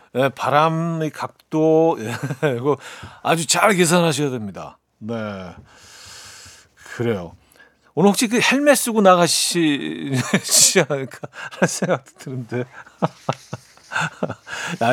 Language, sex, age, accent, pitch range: Korean, male, 40-59, native, 120-170 Hz